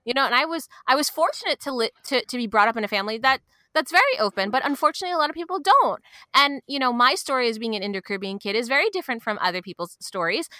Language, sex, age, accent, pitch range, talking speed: English, female, 20-39, American, 200-285 Hz, 260 wpm